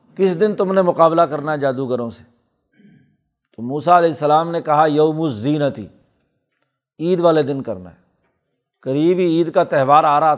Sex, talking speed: male, 170 wpm